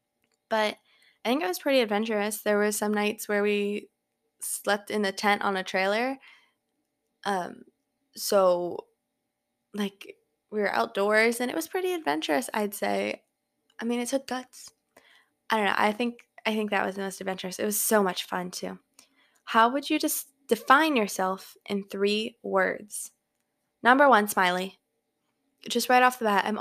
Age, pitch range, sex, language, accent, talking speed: 20-39, 200-250 Hz, female, English, American, 165 wpm